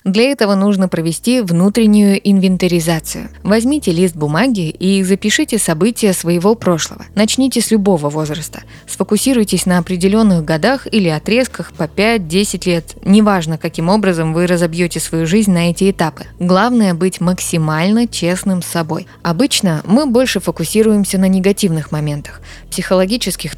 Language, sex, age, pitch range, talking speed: Russian, female, 20-39, 165-205 Hz, 130 wpm